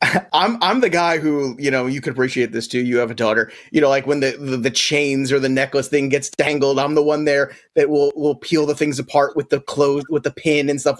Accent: American